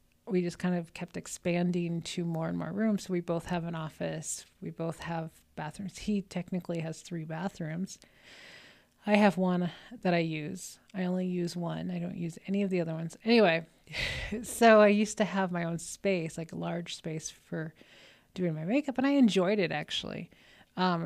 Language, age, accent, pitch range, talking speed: English, 30-49, American, 170-195 Hz, 190 wpm